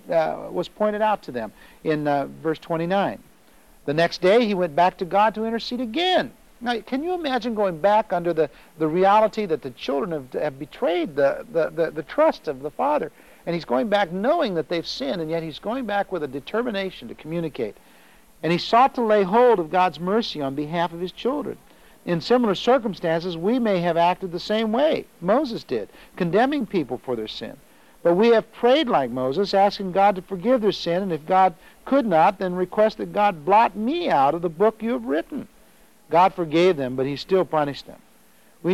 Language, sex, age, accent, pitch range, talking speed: English, male, 60-79, American, 160-220 Hz, 205 wpm